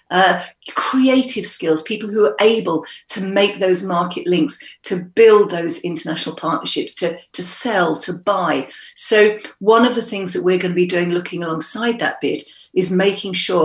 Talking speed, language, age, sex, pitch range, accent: 175 wpm, English, 40-59, female, 175-215 Hz, British